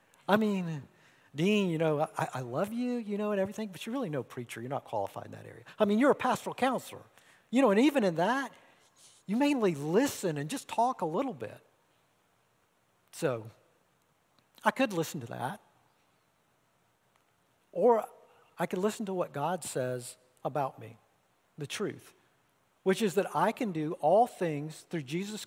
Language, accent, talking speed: English, American, 170 wpm